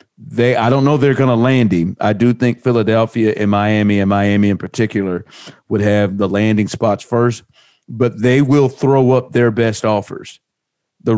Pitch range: 105-125 Hz